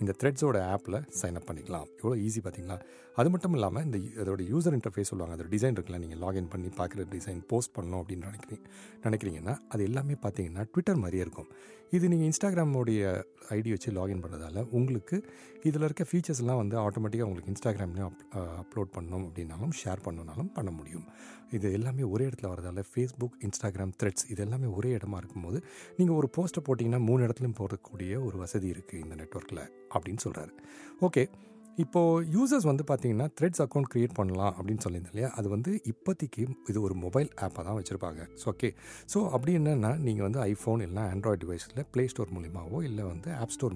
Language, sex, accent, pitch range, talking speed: Tamil, male, native, 95-135 Hz, 165 wpm